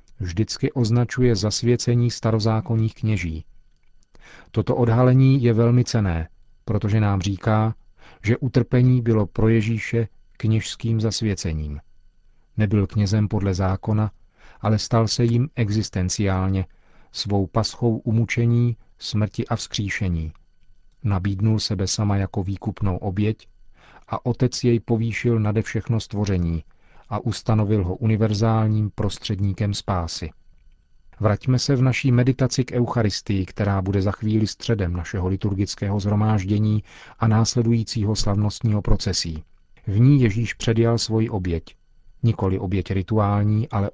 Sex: male